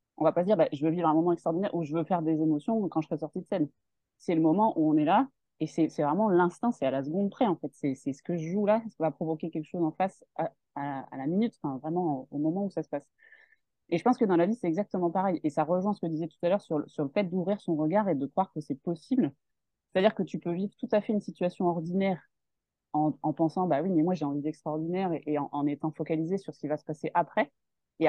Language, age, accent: French, 20-39, French